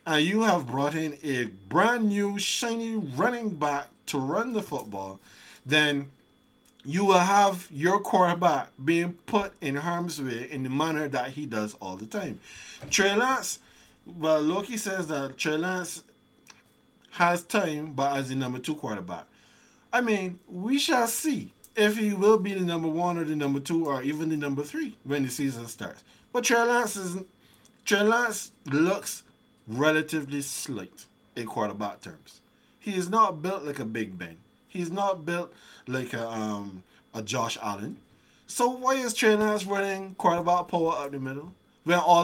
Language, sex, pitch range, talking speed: English, male, 145-215 Hz, 160 wpm